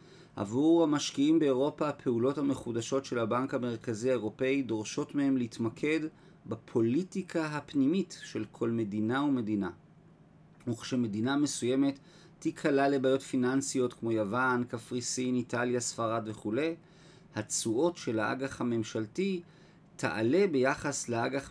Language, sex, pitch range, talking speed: Hebrew, male, 120-170 Hz, 100 wpm